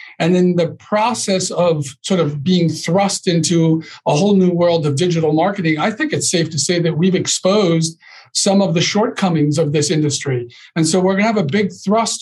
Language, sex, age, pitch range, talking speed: English, male, 50-69, 155-185 Hz, 205 wpm